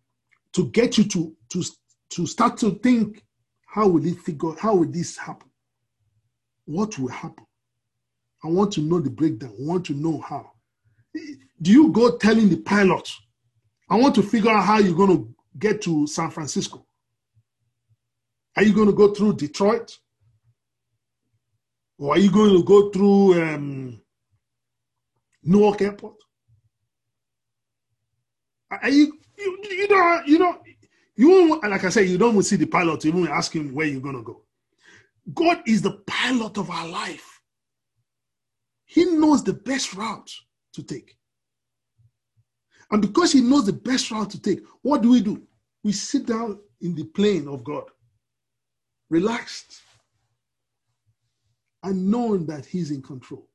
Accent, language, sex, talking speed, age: Nigerian, English, male, 155 wpm, 50-69